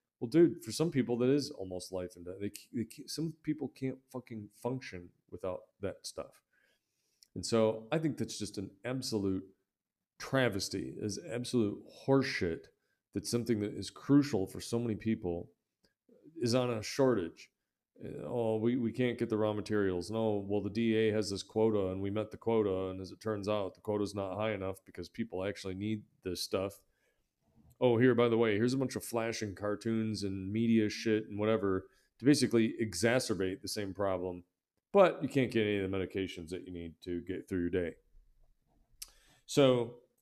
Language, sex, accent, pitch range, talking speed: English, male, American, 95-120 Hz, 180 wpm